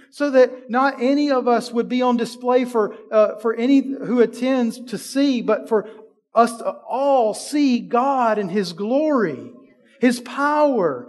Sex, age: male, 40-59